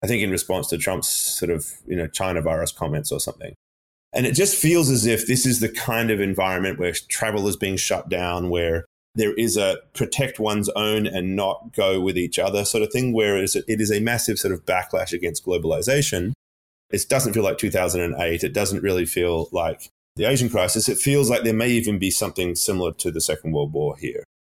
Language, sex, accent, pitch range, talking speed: English, male, Australian, 85-110 Hz, 215 wpm